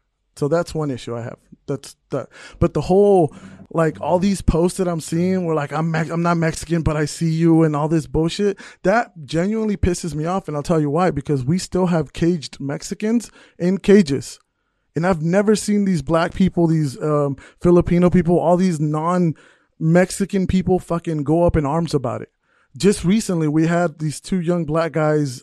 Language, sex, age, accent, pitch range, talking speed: English, male, 20-39, American, 155-190 Hz, 195 wpm